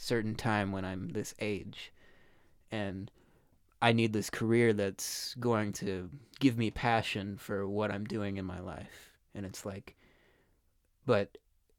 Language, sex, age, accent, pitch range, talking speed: English, male, 20-39, American, 95-115 Hz, 145 wpm